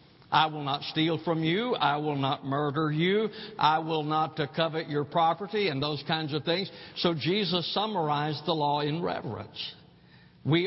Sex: male